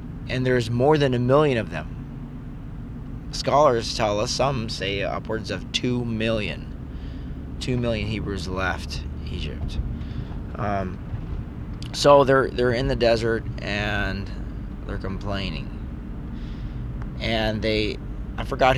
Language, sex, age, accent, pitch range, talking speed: English, male, 20-39, American, 100-130 Hz, 115 wpm